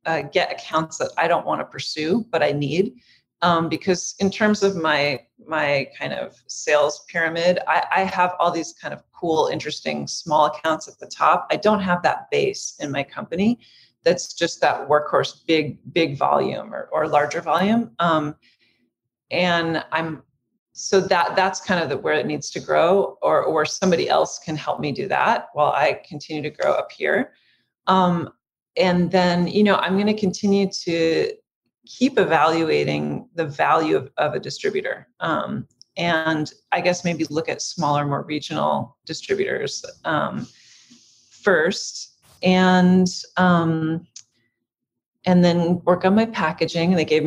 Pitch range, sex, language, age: 150-185 Hz, female, English, 30-49